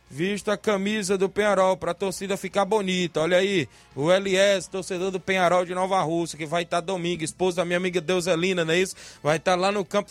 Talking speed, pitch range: 225 wpm, 175-215 Hz